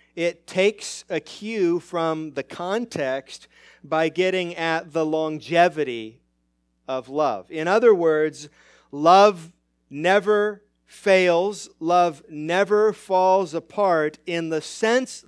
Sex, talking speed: male, 105 wpm